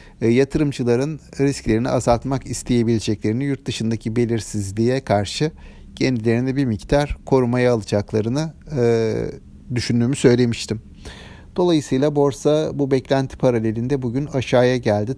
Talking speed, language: 95 wpm, Turkish